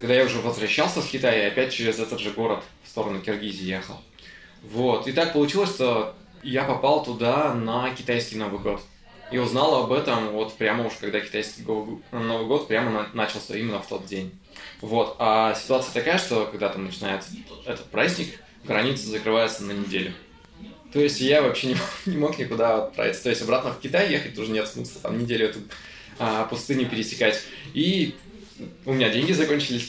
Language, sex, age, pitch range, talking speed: Russian, male, 20-39, 105-135 Hz, 180 wpm